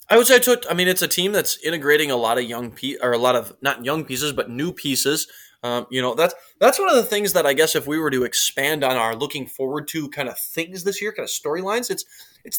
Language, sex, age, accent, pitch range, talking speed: English, male, 20-39, American, 135-180 Hz, 285 wpm